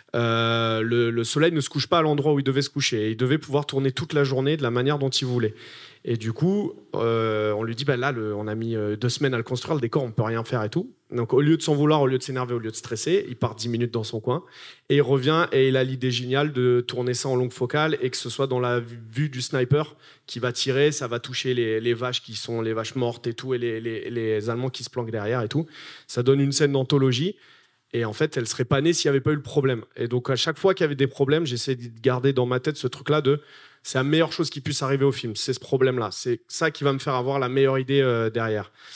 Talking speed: 290 wpm